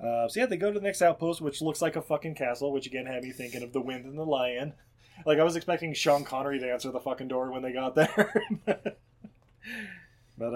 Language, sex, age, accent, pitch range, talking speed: English, male, 20-39, American, 125-180 Hz, 240 wpm